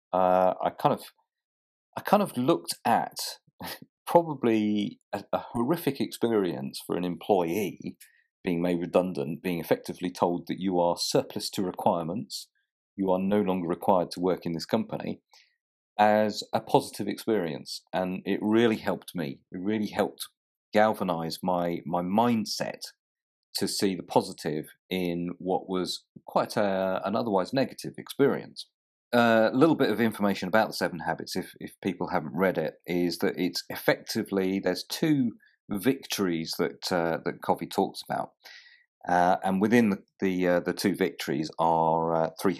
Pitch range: 85-105 Hz